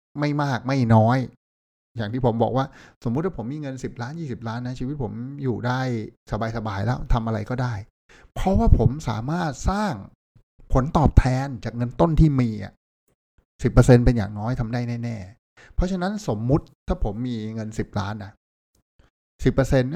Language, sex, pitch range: Thai, male, 105-130 Hz